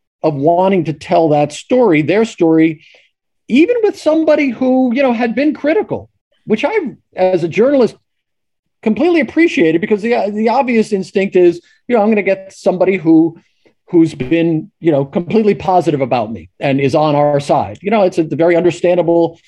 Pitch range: 160-215 Hz